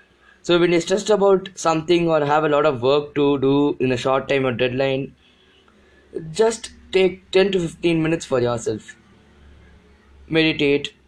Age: 20-39